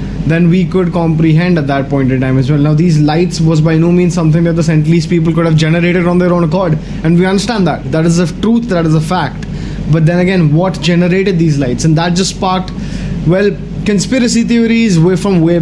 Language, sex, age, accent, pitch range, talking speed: English, male, 20-39, Indian, 155-185 Hz, 225 wpm